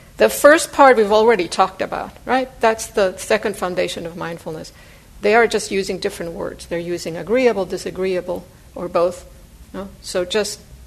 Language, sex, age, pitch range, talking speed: English, female, 60-79, 180-230 Hz, 155 wpm